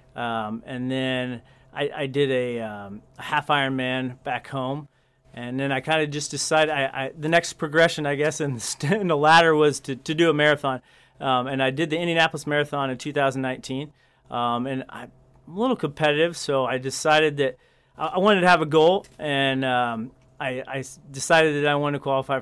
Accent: American